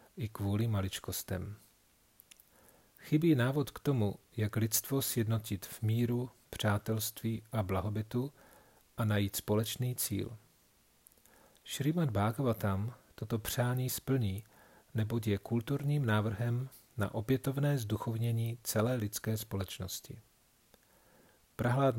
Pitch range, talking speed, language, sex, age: 105-125 Hz, 95 wpm, Czech, male, 40-59